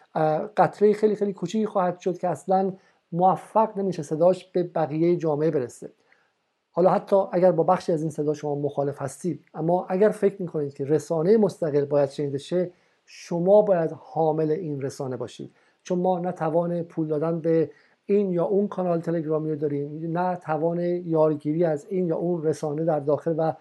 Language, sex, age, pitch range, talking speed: Persian, male, 50-69, 155-185 Hz, 170 wpm